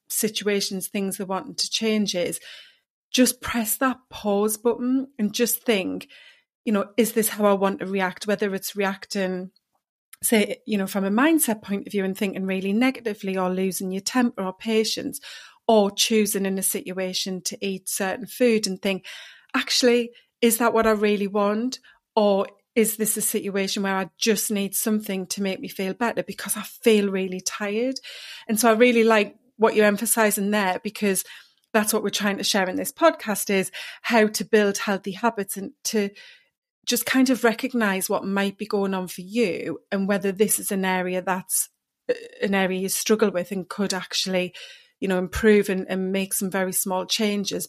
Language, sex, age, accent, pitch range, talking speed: English, female, 30-49, British, 190-225 Hz, 185 wpm